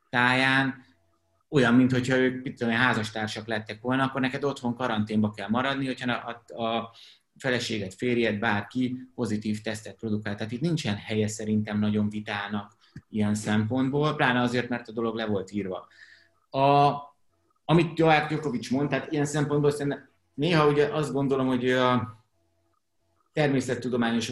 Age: 30-49